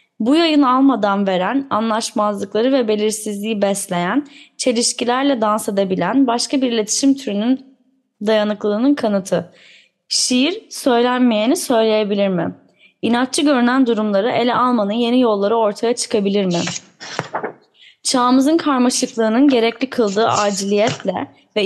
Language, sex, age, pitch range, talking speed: Turkish, female, 10-29, 210-260 Hz, 105 wpm